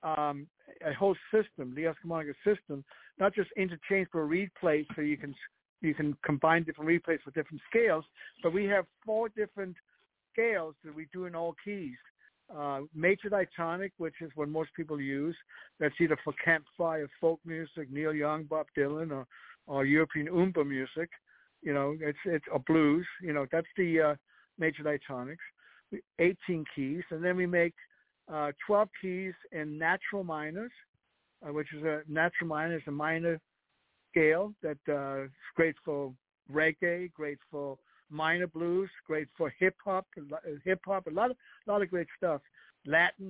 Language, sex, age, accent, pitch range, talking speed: English, male, 60-79, American, 150-185 Hz, 160 wpm